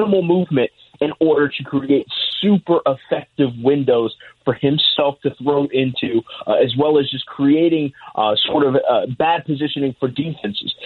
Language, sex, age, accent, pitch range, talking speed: English, male, 30-49, American, 130-185 Hz, 150 wpm